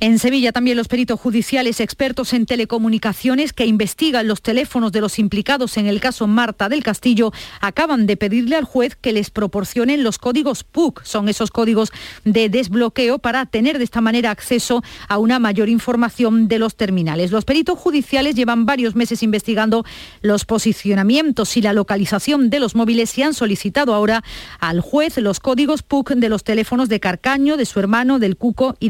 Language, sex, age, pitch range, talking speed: Spanish, female, 40-59, 210-255 Hz, 180 wpm